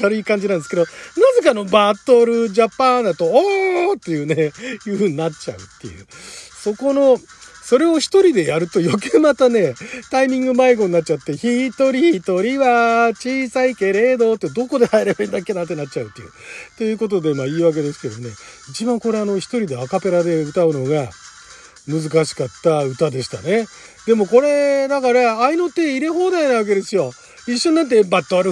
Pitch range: 180-275 Hz